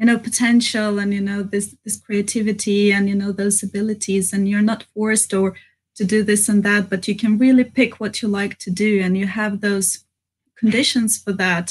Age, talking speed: 20-39, 210 wpm